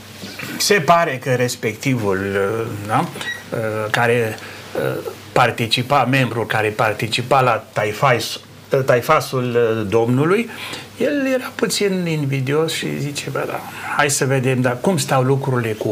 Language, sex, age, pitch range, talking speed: Romanian, male, 60-79, 115-140 Hz, 100 wpm